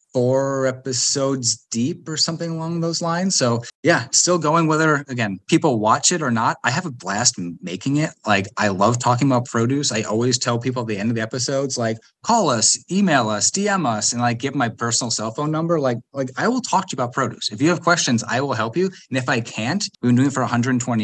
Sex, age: male, 20-39